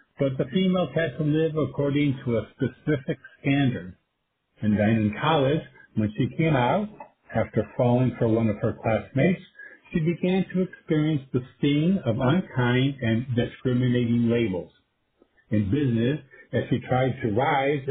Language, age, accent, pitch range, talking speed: English, 50-69, American, 120-175 Hz, 145 wpm